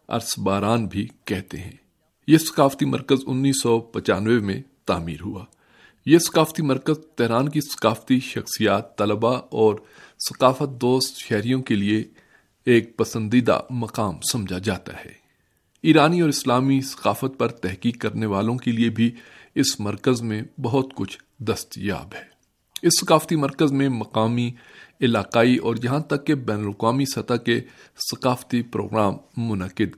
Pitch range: 105-135 Hz